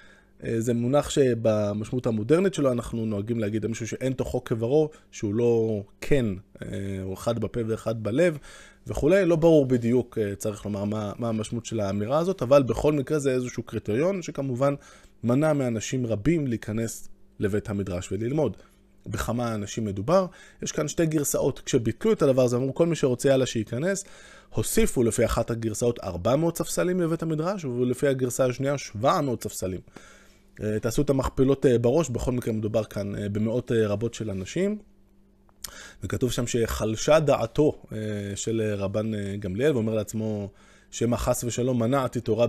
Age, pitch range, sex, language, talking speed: 20-39, 105-140 Hz, male, Hebrew, 145 wpm